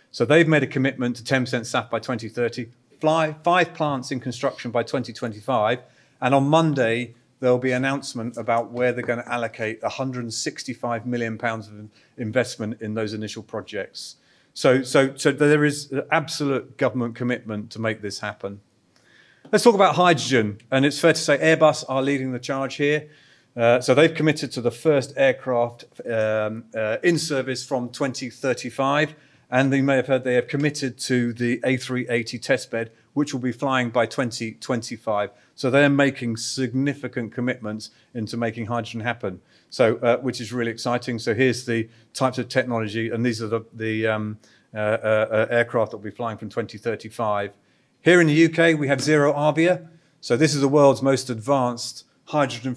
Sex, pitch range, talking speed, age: male, 115-140 Hz, 170 wpm, 40-59